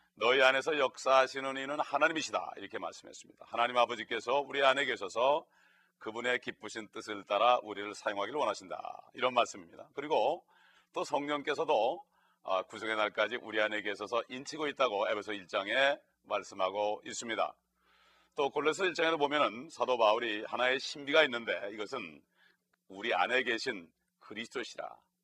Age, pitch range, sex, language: 40-59, 105-135 Hz, male, Korean